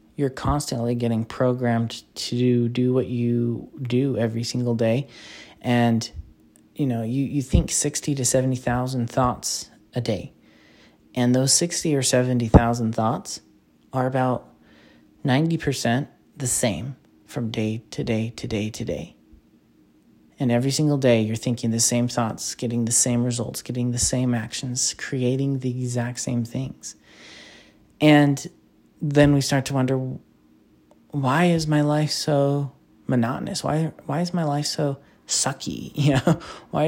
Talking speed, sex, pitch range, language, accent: 140 wpm, male, 115-140 Hz, English, American